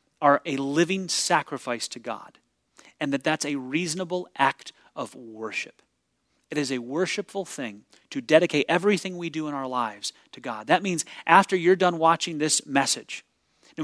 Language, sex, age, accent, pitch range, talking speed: English, male, 30-49, American, 145-185 Hz, 165 wpm